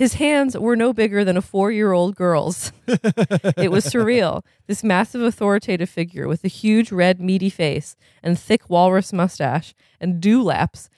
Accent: American